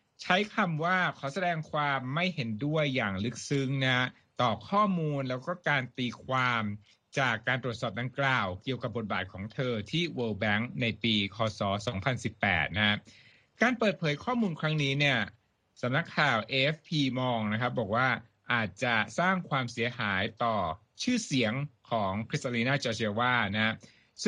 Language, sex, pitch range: Thai, male, 115-150 Hz